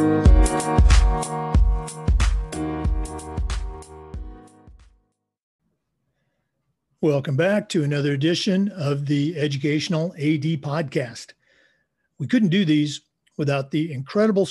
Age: 50-69